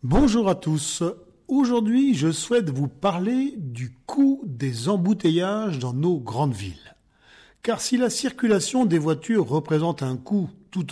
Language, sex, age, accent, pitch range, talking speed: French, male, 40-59, French, 145-205 Hz, 145 wpm